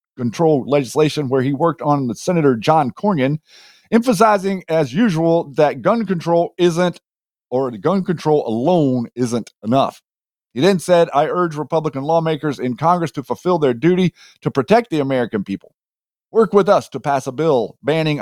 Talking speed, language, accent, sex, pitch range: 165 wpm, English, American, male, 135-175 Hz